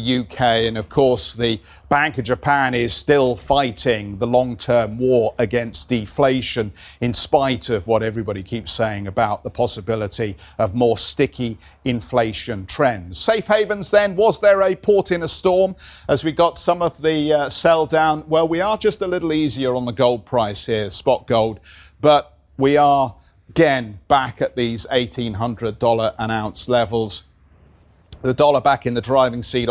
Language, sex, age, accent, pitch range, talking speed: English, male, 50-69, British, 115-150 Hz, 165 wpm